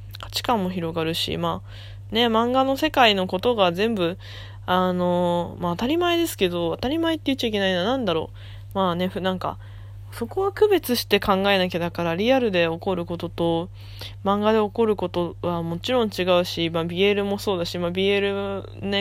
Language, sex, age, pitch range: Japanese, female, 20-39, 165-205 Hz